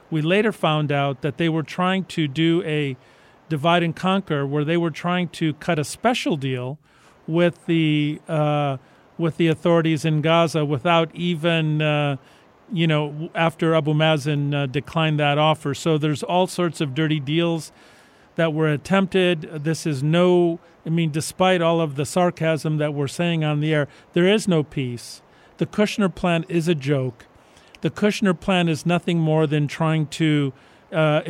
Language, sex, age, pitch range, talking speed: English, male, 50-69, 150-170 Hz, 170 wpm